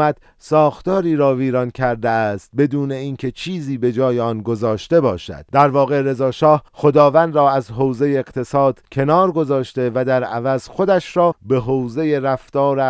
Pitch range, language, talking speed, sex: 115-145 Hz, Persian, 145 wpm, male